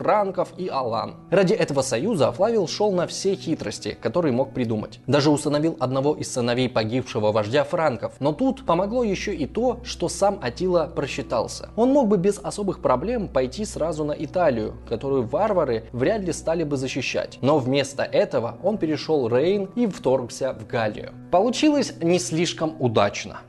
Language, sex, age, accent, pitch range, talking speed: Russian, male, 20-39, native, 130-190 Hz, 160 wpm